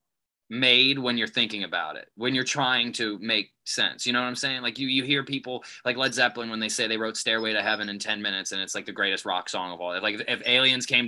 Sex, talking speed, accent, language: male, 275 wpm, American, English